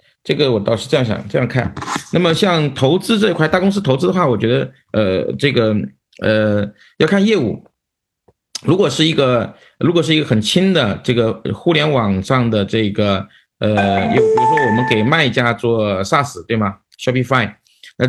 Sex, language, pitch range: male, Chinese, 105-130 Hz